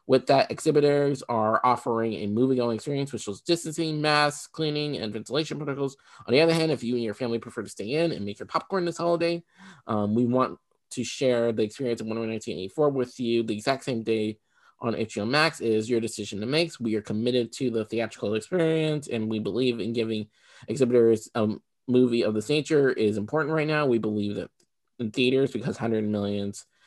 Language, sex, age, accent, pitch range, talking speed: English, male, 20-39, American, 110-140 Hz, 205 wpm